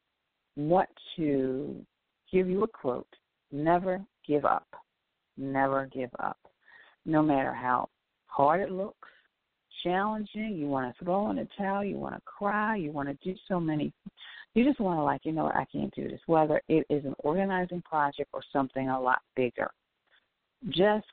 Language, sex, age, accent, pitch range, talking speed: English, female, 50-69, American, 140-190 Hz, 175 wpm